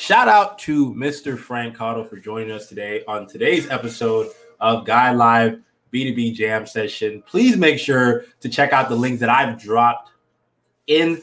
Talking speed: 165 wpm